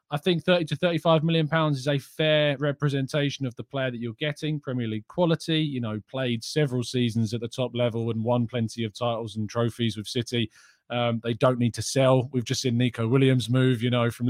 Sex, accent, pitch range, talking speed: male, British, 120-150 Hz, 225 wpm